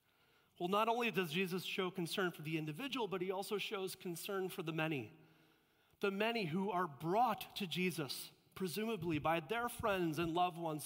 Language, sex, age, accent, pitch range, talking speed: English, male, 30-49, American, 145-190 Hz, 175 wpm